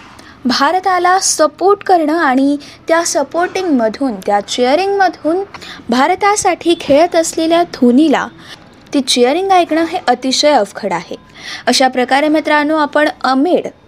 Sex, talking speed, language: female, 110 wpm, Marathi